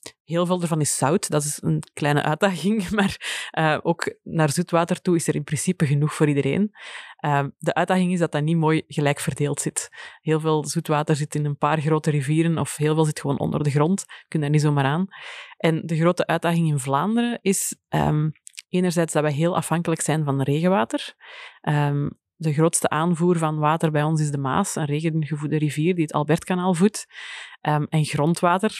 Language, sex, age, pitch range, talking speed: Dutch, female, 20-39, 150-180 Hz, 190 wpm